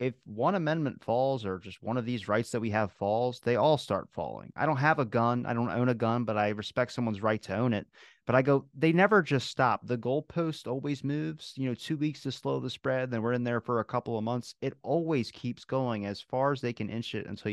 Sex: male